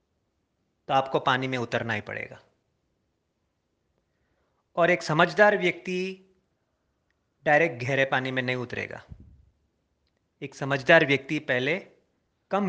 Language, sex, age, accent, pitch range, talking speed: Hindi, male, 30-49, native, 110-170 Hz, 105 wpm